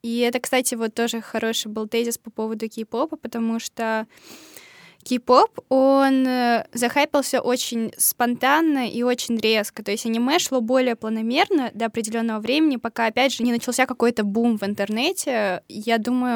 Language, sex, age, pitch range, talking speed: Russian, female, 10-29, 220-250 Hz, 150 wpm